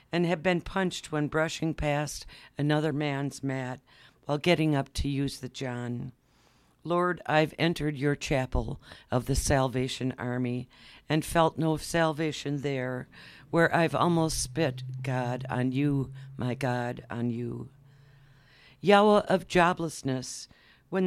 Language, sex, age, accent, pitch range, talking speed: English, female, 60-79, American, 130-165 Hz, 130 wpm